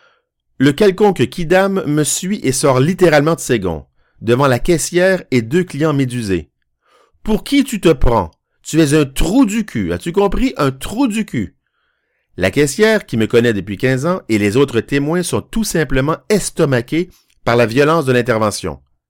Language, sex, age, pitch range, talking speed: French, male, 50-69, 105-160 Hz, 180 wpm